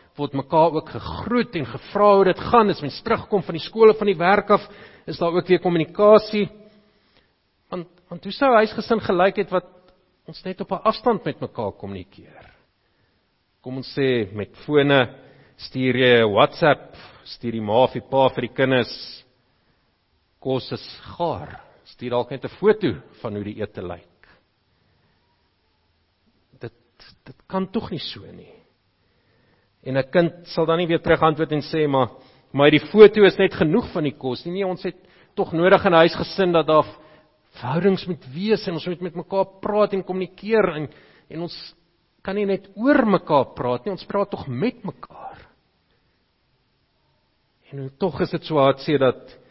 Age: 50-69